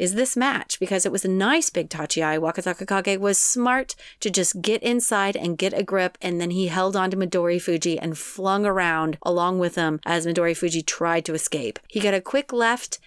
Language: English